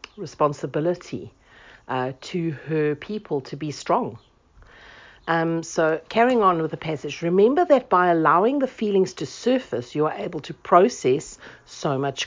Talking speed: 145 wpm